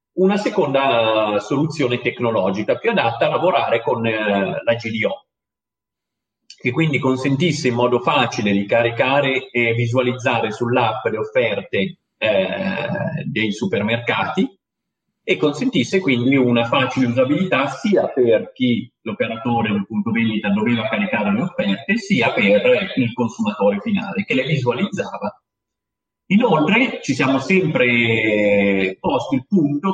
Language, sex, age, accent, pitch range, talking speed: Italian, male, 40-59, native, 115-175 Hz, 115 wpm